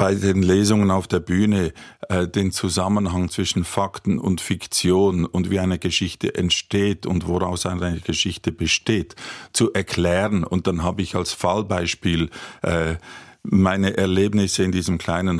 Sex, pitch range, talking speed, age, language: male, 85-105 Hz, 145 wpm, 50-69, German